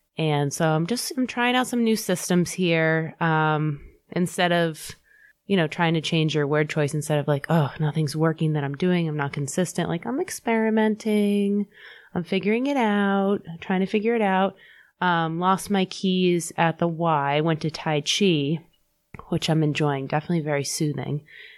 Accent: American